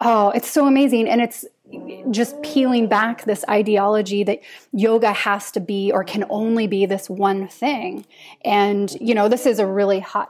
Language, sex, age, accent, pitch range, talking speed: English, female, 20-39, American, 200-240 Hz, 180 wpm